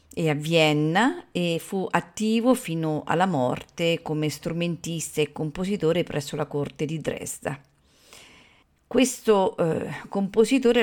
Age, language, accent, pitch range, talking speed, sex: 50-69, Italian, native, 155-215 Hz, 110 wpm, female